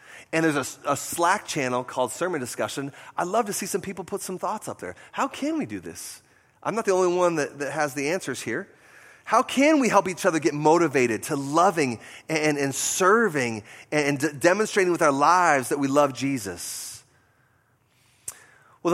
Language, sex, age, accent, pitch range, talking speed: English, male, 30-49, American, 125-175 Hz, 190 wpm